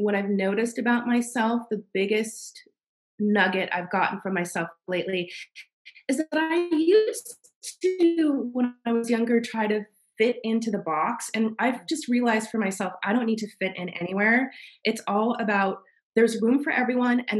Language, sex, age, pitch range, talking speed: English, female, 20-39, 195-245 Hz, 170 wpm